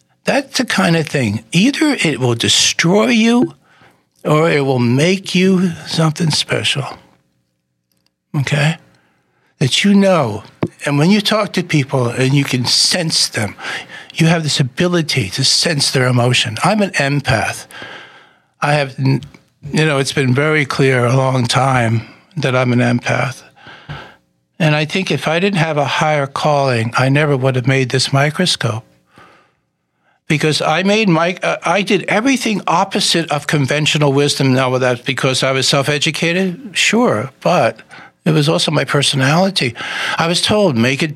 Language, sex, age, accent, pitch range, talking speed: English, male, 60-79, American, 130-180 Hz, 155 wpm